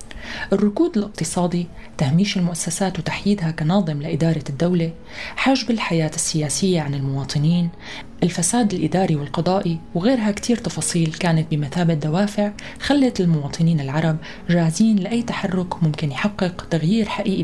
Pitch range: 160-205 Hz